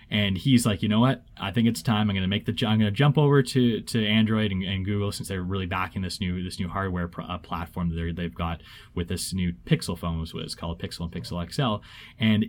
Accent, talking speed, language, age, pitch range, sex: American, 275 wpm, English, 20-39, 95-140 Hz, male